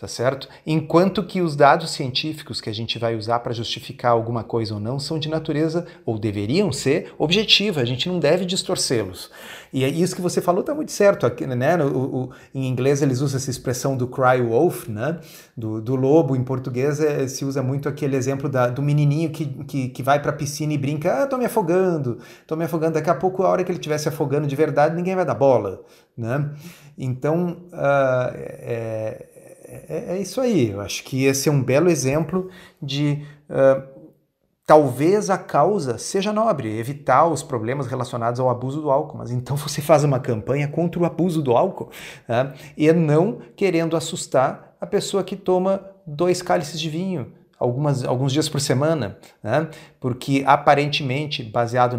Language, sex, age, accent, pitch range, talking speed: Portuguese, male, 40-59, Brazilian, 130-165 Hz, 185 wpm